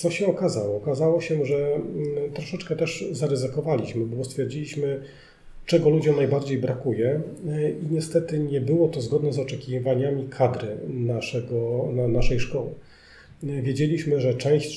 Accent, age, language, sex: native, 40-59, Polish, male